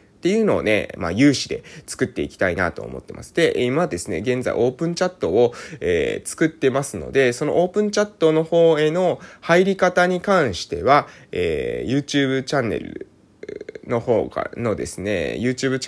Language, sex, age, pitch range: Japanese, male, 20-39, 105-170 Hz